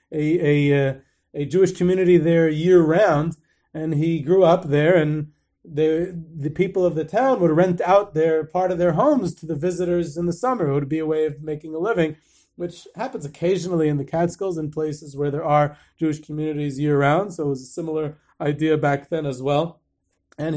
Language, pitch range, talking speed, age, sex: English, 145-170 Hz, 195 wpm, 30-49, male